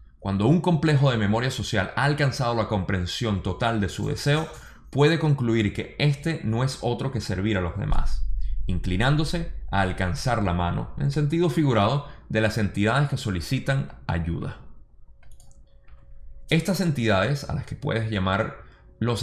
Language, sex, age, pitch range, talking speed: Spanish, male, 20-39, 95-135 Hz, 150 wpm